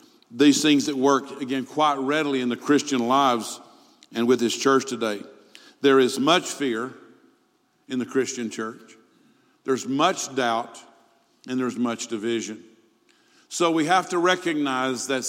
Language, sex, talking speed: English, male, 145 wpm